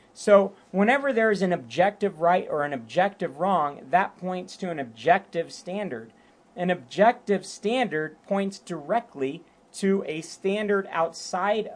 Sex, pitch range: male, 145-195 Hz